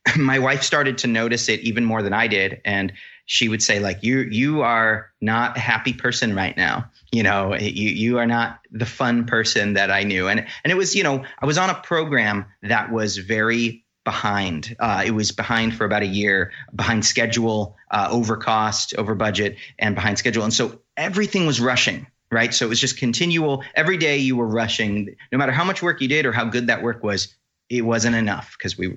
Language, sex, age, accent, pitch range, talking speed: English, male, 30-49, American, 105-130 Hz, 215 wpm